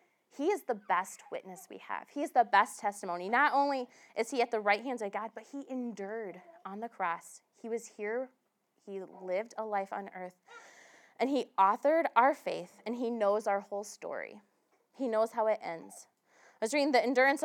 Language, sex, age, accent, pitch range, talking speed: English, female, 20-39, American, 190-240 Hz, 200 wpm